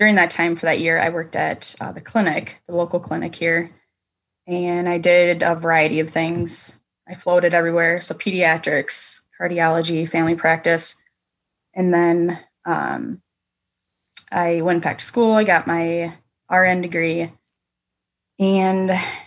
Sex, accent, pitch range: female, American, 160-180 Hz